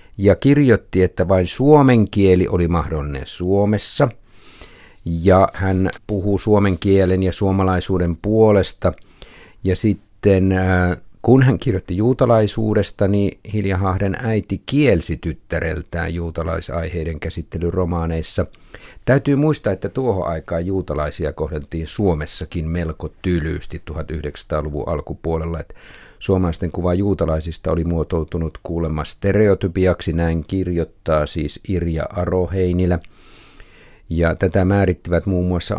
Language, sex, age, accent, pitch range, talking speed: Finnish, male, 50-69, native, 85-100 Hz, 100 wpm